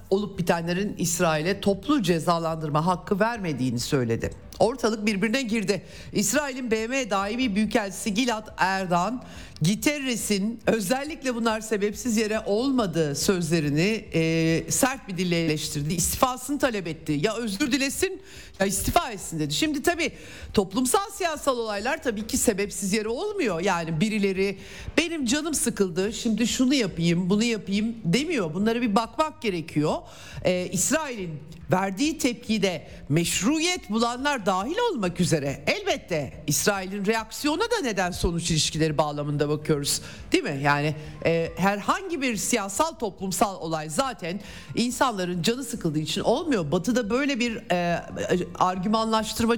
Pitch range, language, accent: 170-245 Hz, Turkish, native